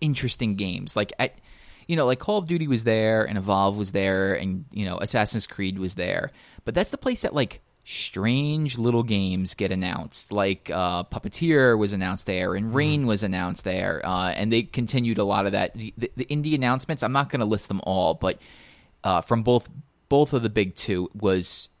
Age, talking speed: 20-39, 205 wpm